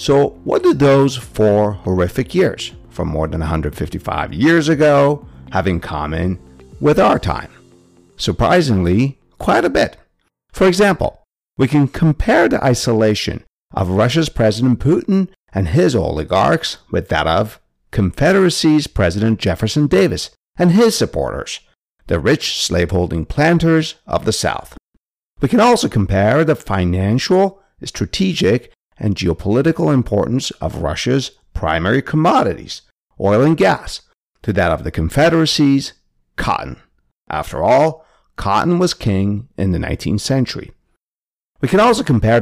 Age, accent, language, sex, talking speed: 60-79, American, English, male, 125 wpm